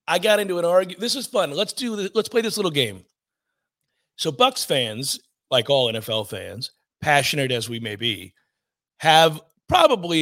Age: 40-59